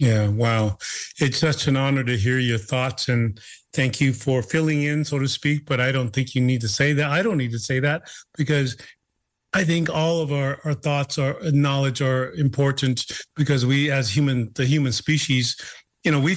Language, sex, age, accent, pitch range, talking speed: English, male, 40-59, American, 130-150 Hz, 205 wpm